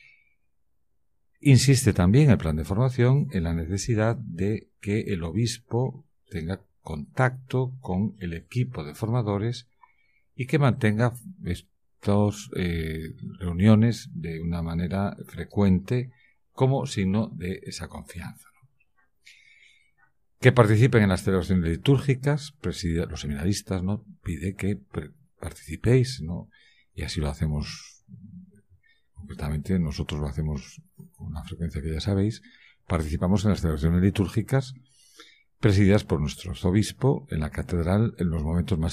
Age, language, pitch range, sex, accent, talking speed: 50-69, Spanish, 85-125 Hz, male, Spanish, 120 wpm